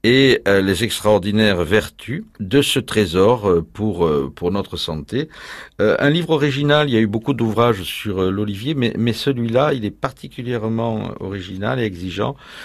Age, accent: 50-69, French